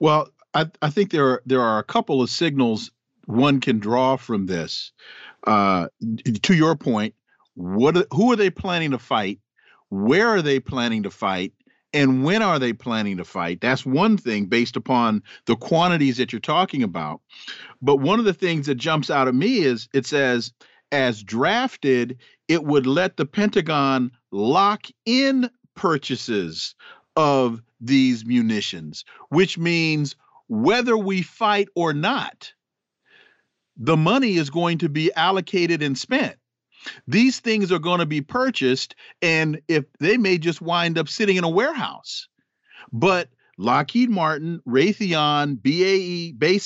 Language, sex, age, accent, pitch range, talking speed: English, male, 50-69, American, 130-180 Hz, 150 wpm